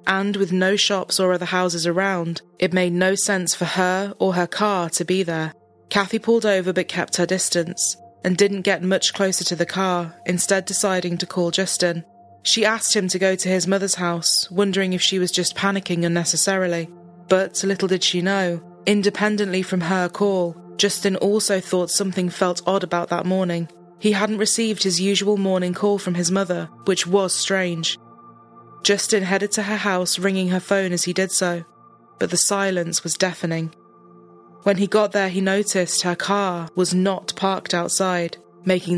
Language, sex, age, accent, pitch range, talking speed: English, female, 20-39, British, 175-195 Hz, 180 wpm